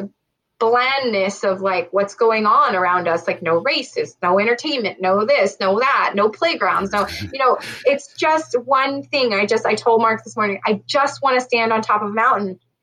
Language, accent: English, American